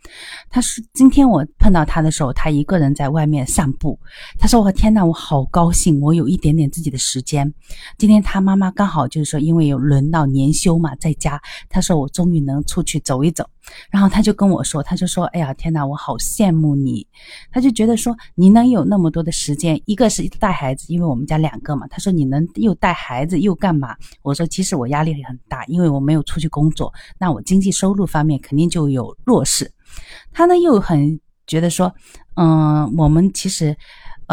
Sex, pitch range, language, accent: female, 150-185 Hz, Chinese, native